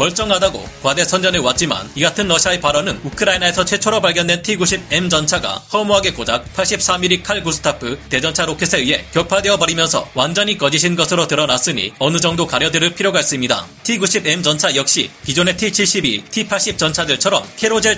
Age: 30-49